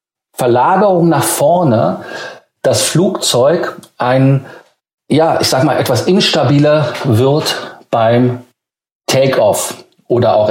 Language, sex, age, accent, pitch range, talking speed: German, male, 50-69, German, 115-145 Hz, 95 wpm